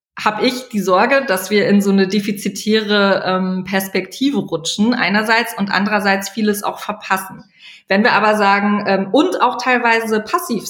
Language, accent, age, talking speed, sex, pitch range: German, German, 20-39, 155 wpm, female, 190-225 Hz